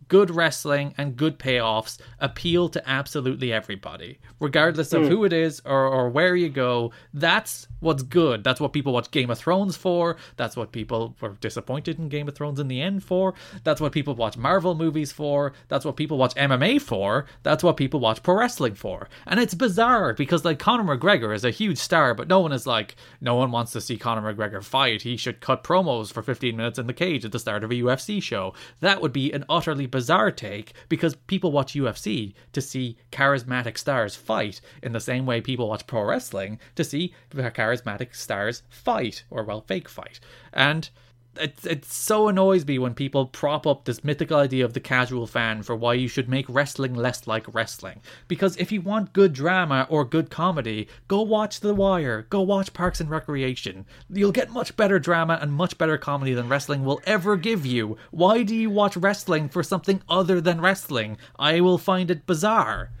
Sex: male